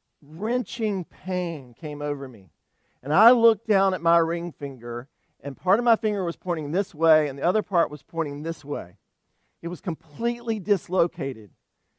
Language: English